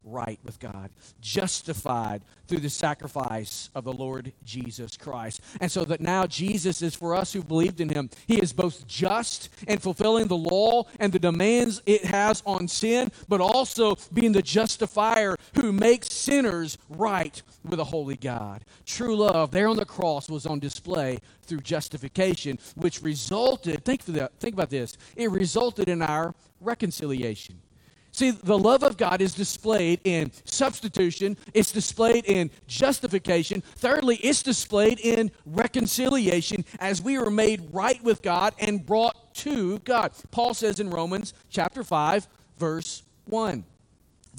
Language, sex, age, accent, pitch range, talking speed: English, male, 50-69, American, 155-220 Hz, 155 wpm